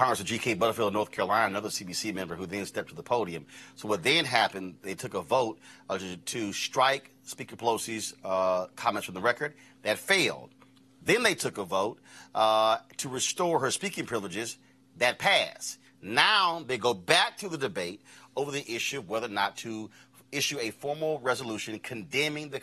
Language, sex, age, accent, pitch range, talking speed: English, male, 30-49, American, 105-140 Hz, 185 wpm